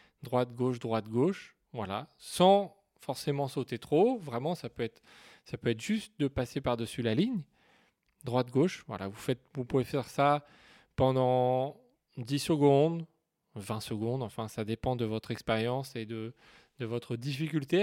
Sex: male